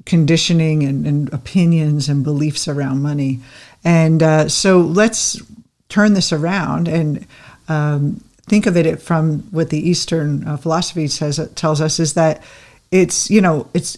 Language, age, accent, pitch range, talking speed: English, 50-69, American, 150-175 Hz, 155 wpm